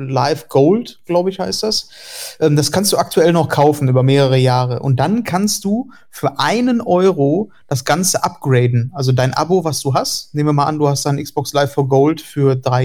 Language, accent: German, German